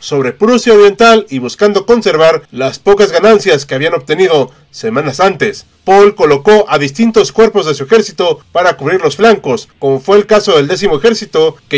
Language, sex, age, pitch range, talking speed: Spanish, male, 40-59, 175-230 Hz, 175 wpm